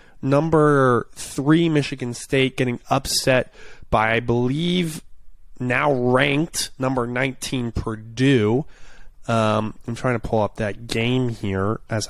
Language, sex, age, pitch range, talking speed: English, male, 20-39, 110-135 Hz, 120 wpm